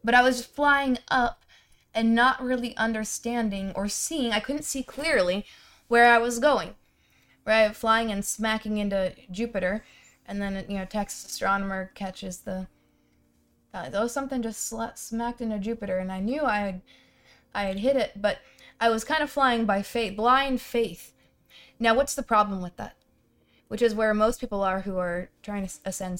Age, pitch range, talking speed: 20-39, 195-240 Hz, 175 wpm